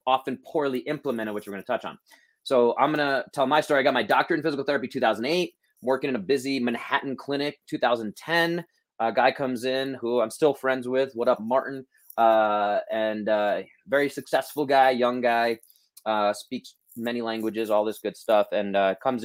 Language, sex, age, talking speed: English, male, 20-39, 195 wpm